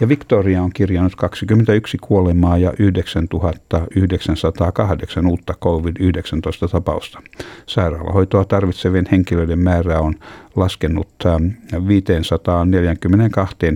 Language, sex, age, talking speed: Finnish, male, 60-79, 80 wpm